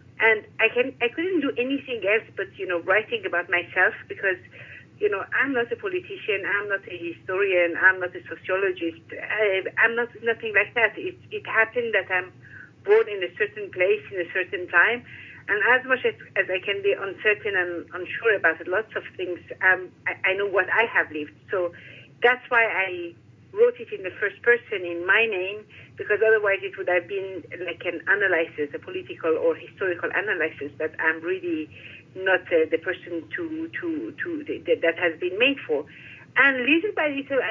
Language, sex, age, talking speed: English, female, 50-69, 195 wpm